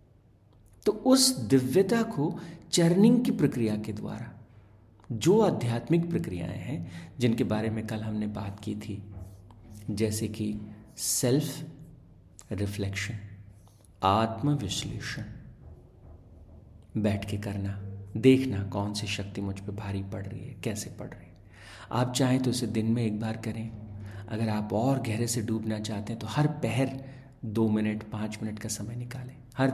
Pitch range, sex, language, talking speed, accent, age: 105-125 Hz, male, Hindi, 145 wpm, native, 50-69